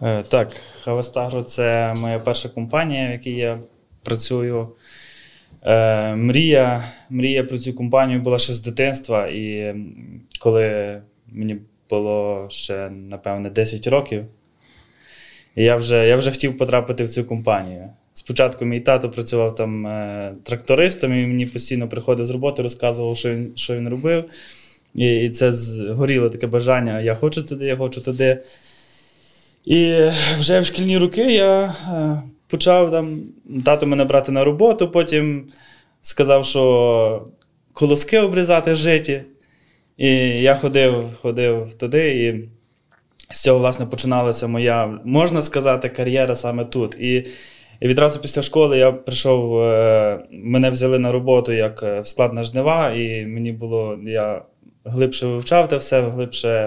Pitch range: 115-135 Hz